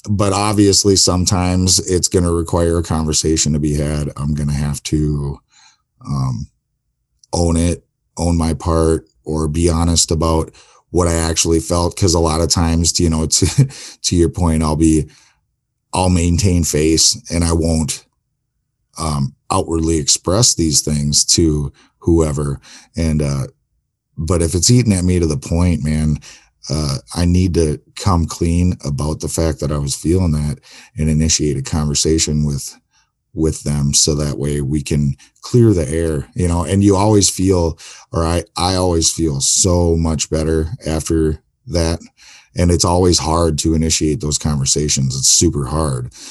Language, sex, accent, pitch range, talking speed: English, male, American, 75-85 Hz, 160 wpm